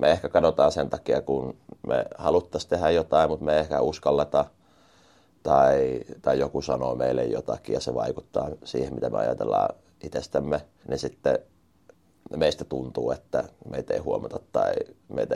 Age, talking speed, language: 30-49, 150 wpm, Finnish